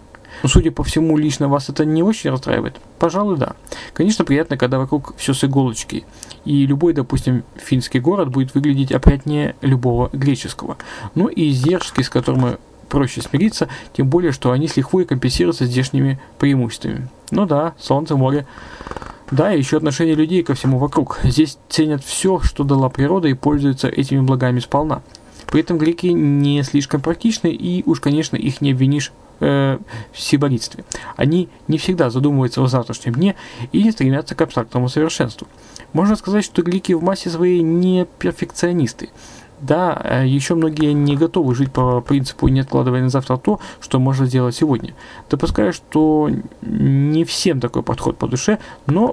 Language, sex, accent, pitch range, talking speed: Russian, male, native, 130-160 Hz, 160 wpm